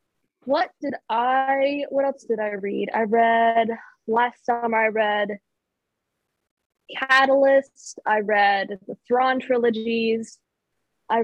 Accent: American